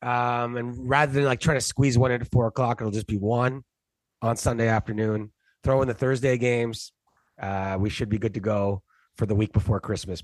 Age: 30-49